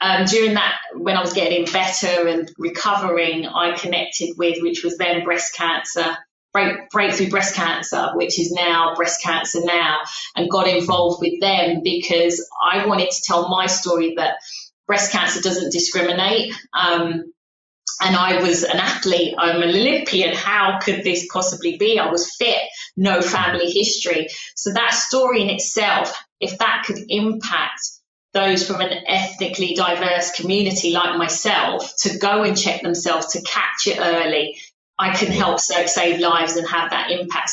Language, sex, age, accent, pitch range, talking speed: English, female, 20-39, British, 170-190 Hz, 160 wpm